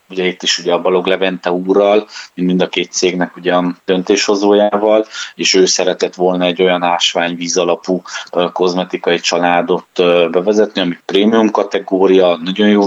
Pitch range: 85-95 Hz